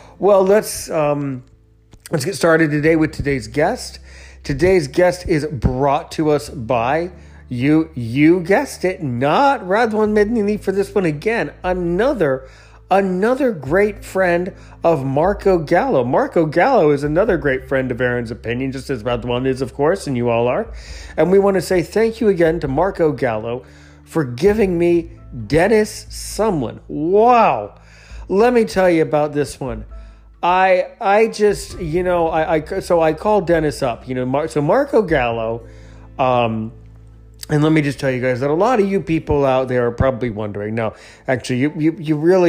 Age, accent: 40-59, American